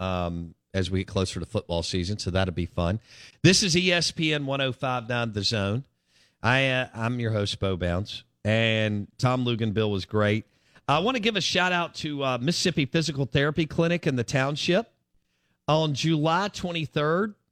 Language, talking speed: English, 170 wpm